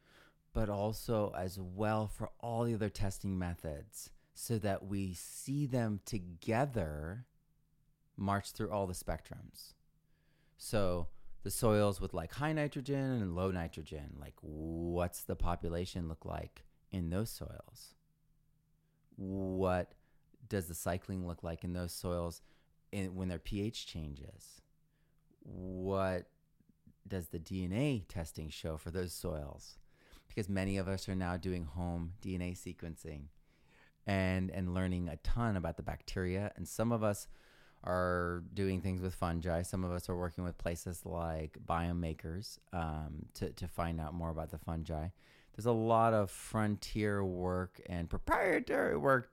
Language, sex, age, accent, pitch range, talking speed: English, male, 30-49, American, 85-105 Hz, 140 wpm